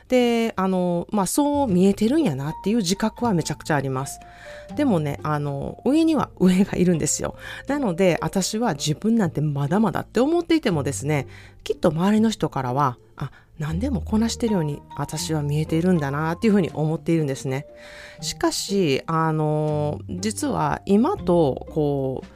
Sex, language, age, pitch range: female, Japanese, 30-49, 145-230 Hz